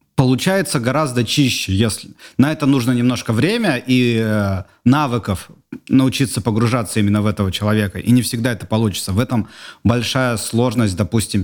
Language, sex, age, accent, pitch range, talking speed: Russian, male, 30-49, native, 100-125 Hz, 140 wpm